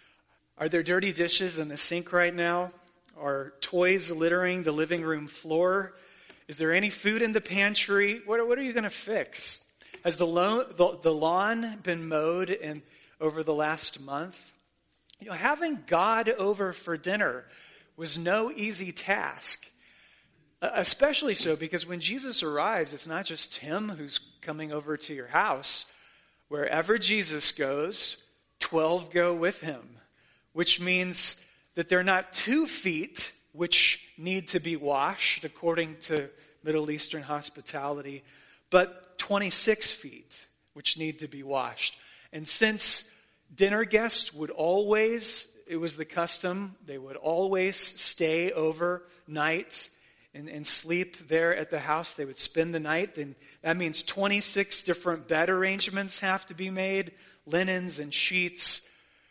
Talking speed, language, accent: 145 wpm, English, American